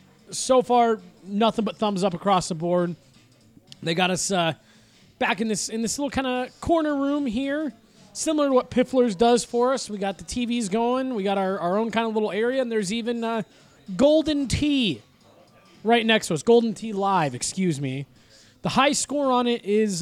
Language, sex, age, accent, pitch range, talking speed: English, male, 20-39, American, 185-250 Hz, 200 wpm